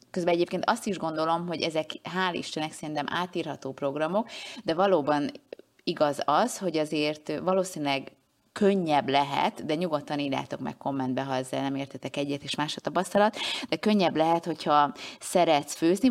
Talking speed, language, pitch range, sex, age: 155 wpm, Hungarian, 140-170 Hz, female, 30-49